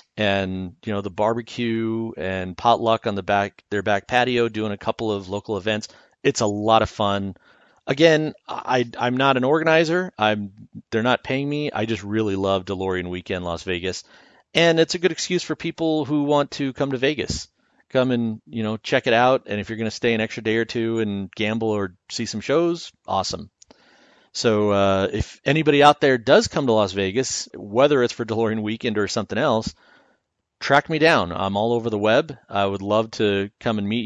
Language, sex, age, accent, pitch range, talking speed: English, male, 40-59, American, 100-130 Hz, 205 wpm